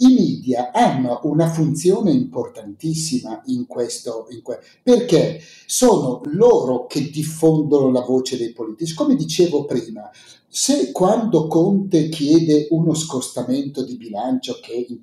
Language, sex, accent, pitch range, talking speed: Italian, male, native, 125-175 Hz, 120 wpm